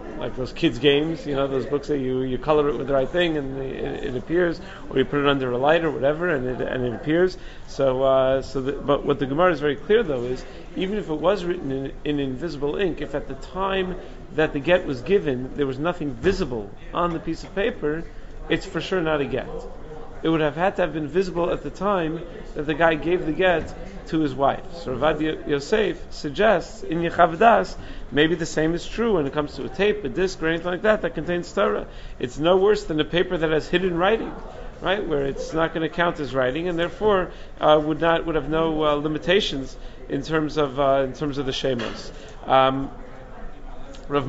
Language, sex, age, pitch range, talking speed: English, male, 40-59, 140-175 Hz, 225 wpm